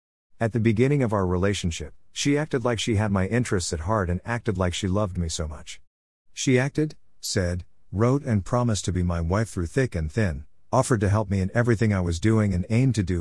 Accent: American